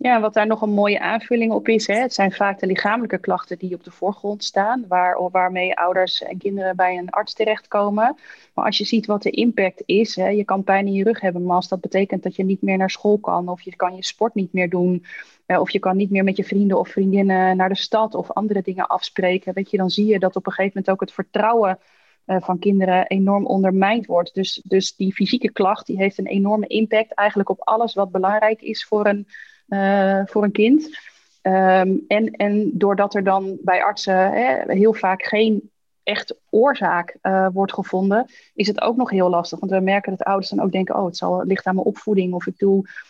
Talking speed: 225 wpm